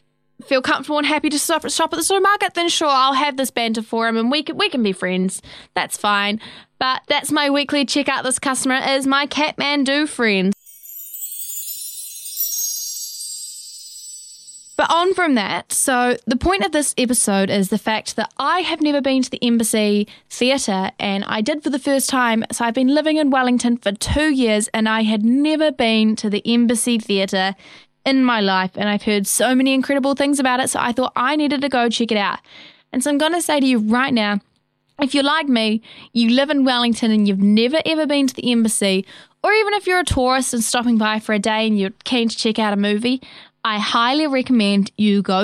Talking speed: 205 wpm